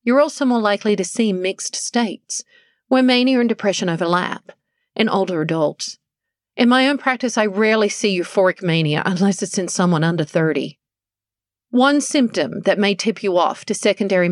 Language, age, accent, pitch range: English, 40-59, American, 180-240 Hz